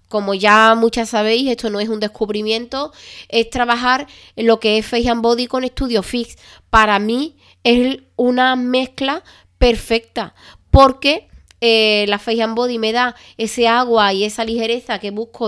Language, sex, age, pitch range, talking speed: Spanish, female, 20-39, 215-245 Hz, 160 wpm